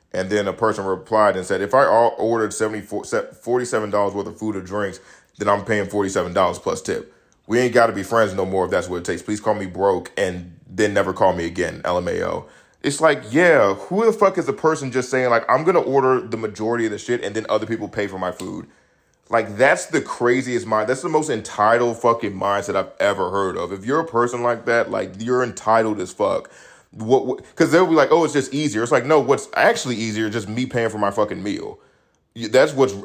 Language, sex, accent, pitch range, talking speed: English, male, American, 100-125 Hz, 230 wpm